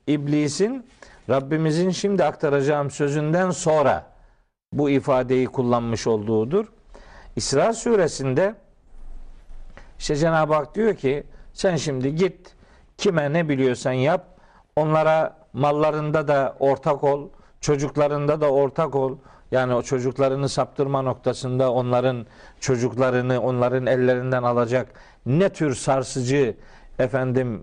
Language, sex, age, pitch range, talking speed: Turkish, male, 50-69, 130-175 Hz, 100 wpm